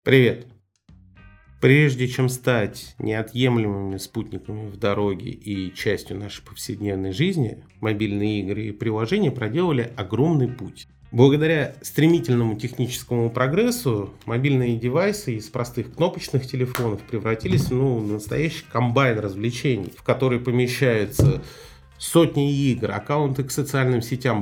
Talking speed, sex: 110 wpm, male